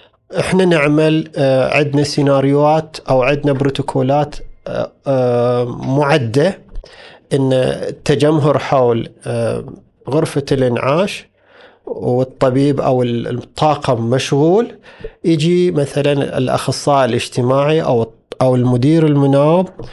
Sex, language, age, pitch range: male, Arabic, 40-59, 130-160 Hz